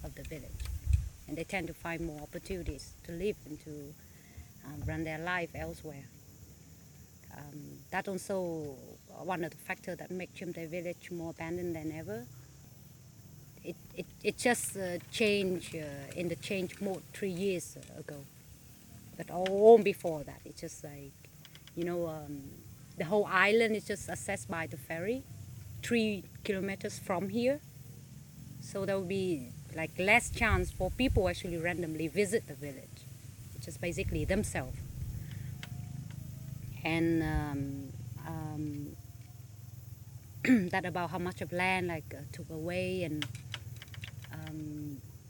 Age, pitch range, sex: 30-49, 125-180 Hz, female